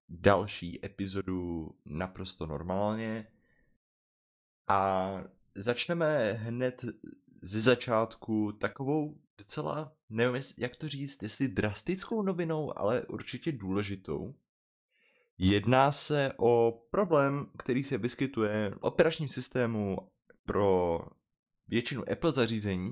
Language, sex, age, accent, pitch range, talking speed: Czech, male, 20-39, native, 95-125 Hz, 90 wpm